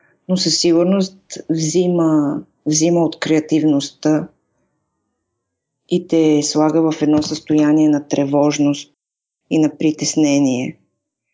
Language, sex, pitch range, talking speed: Bulgarian, female, 140-155 Hz, 95 wpm